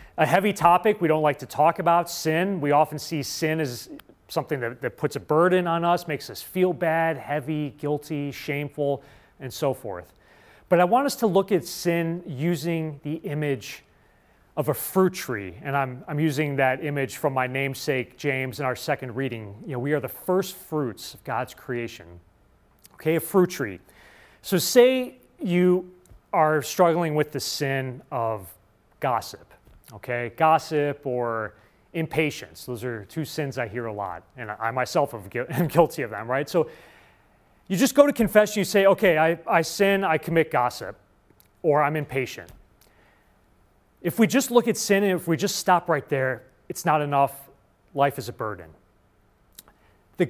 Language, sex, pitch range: English, male, 125-170 Hz